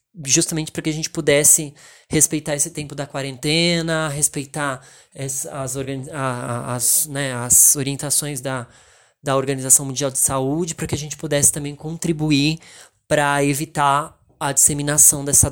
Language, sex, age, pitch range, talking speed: Portuguese, male, 20-39, 140-170 Hz, 145 wpm